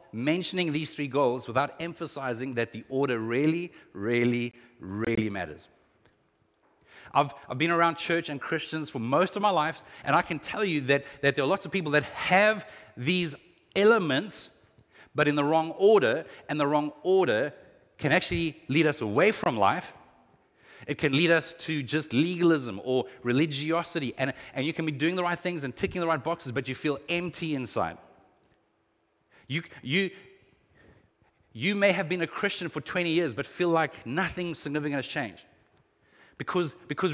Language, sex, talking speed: English, male, 170 wpm